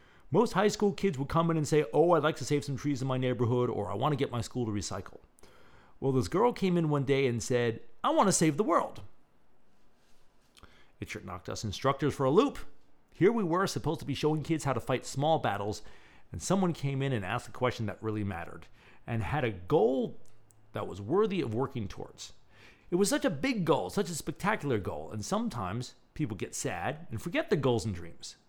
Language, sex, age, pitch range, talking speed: English, male, 40-59, 105-155 Hz, 225 wpm